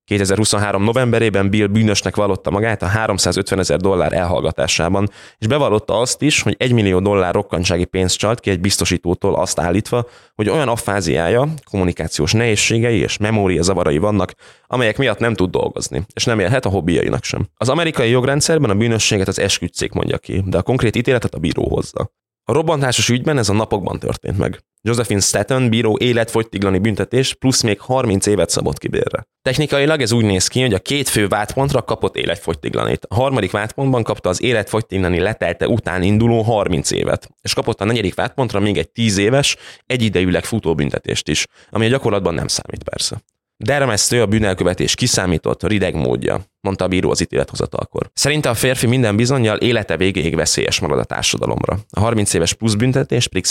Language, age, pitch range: Hungarian, 20-39, 95-125 Hz